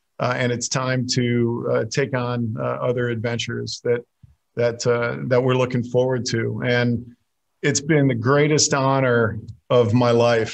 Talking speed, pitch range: 160 wpm, 115-125 Hz